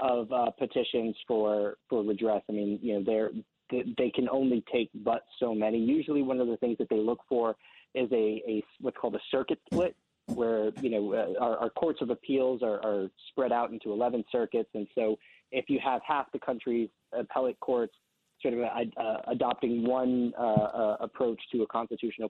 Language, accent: English, American